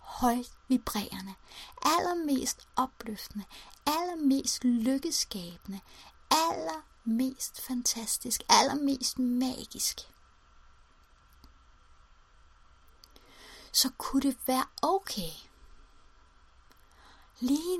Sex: female